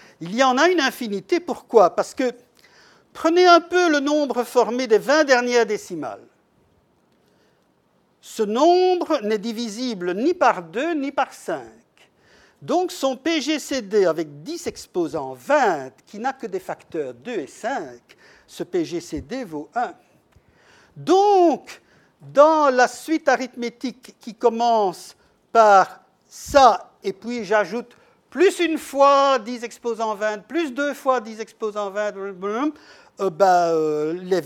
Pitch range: 205-285 Hz